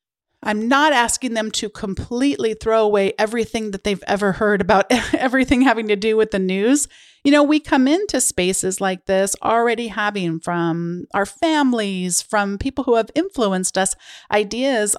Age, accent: 40-59, American